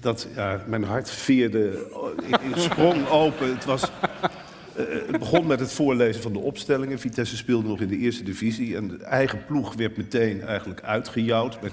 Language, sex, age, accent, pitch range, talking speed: Dutch, male, 50-69, Dutch, 105-130 Hz, 185 wpm